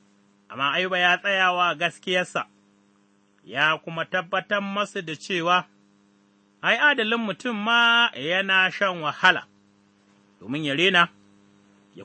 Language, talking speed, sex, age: English, 85 wpm, male, 30-49